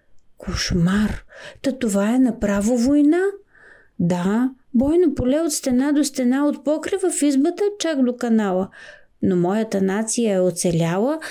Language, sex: Bulgarian, female